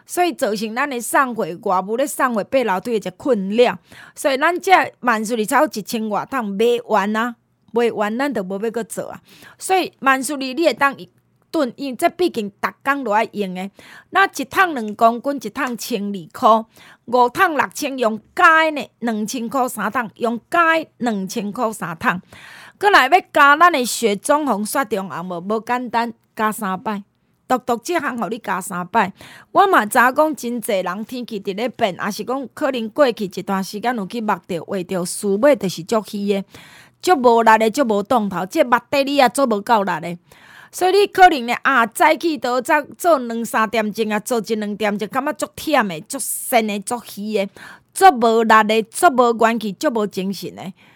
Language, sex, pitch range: Chinese, female, 210-275 Hz